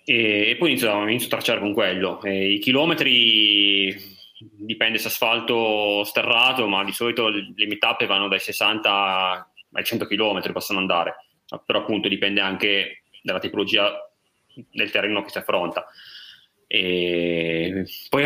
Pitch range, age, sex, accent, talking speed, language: 105-135 Hz, 20-39, male, native, 140 wpm, Italian